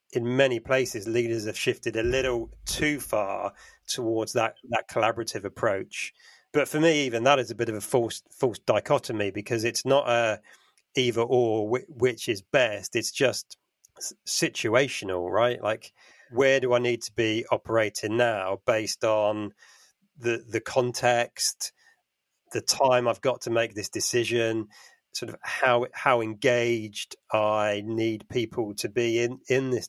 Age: 40-59